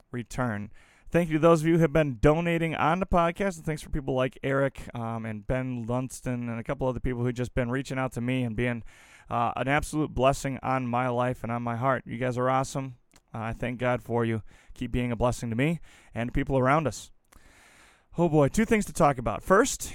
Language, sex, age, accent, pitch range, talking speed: English, male, 20-39, American, 120-150 Hz, 235 wpm